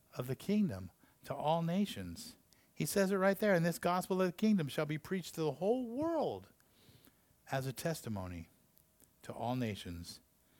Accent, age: American, 50-69